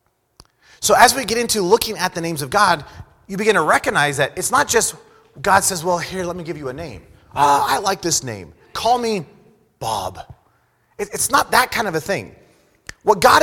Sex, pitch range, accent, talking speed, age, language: male, 140-200 Hz, American, 205 wpm, 30-49, English